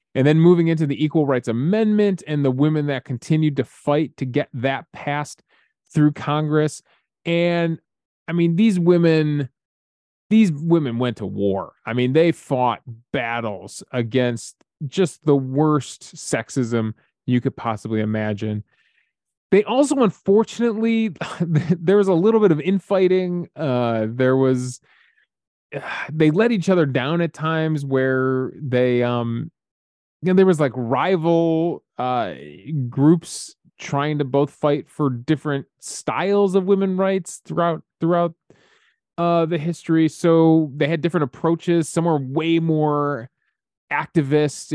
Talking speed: 135 wpm